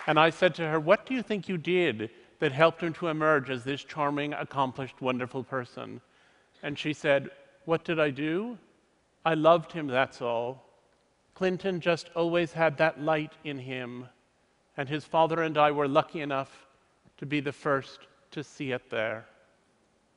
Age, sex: 40-59, male